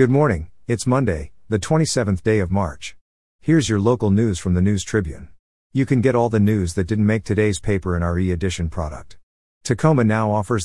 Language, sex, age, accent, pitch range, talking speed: English, male, 50-69, American, 90-110 Hz, 195 wpm